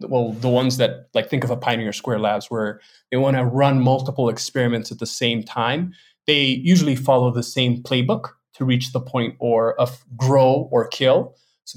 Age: 20-39